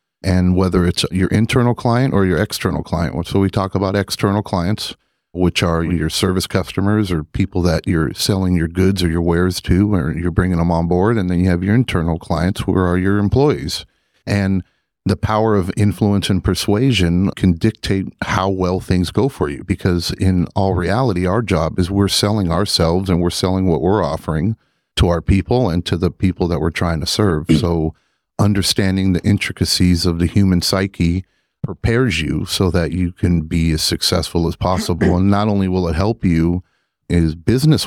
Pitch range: 85-100 Hz